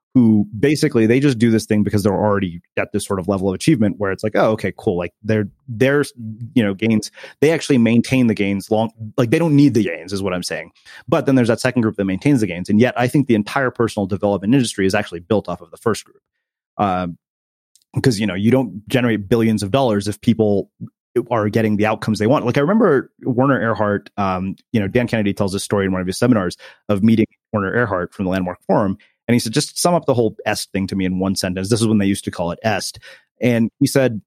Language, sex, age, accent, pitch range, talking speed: English, male, 30-49, American, 105-130 Hz, 250 wpm